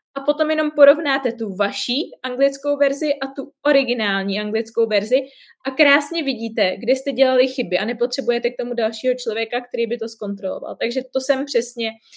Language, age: Czech, 20-39